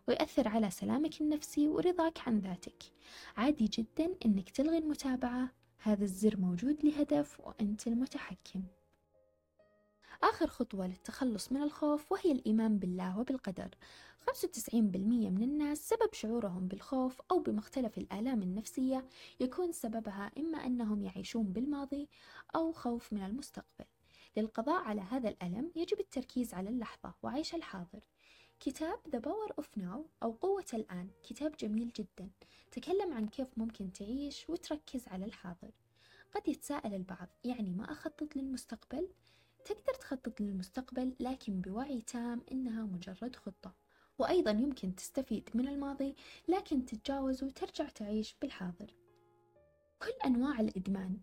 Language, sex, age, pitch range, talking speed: Arabic, female, 20-39, 210-295 Hz, 125 wpm